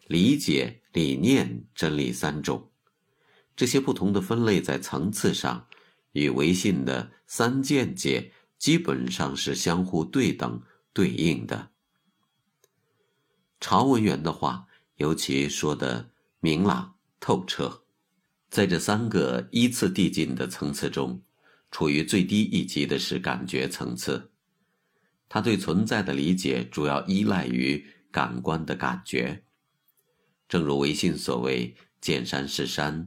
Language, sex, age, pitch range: Chinese, male, 50-69, 65-95 Hz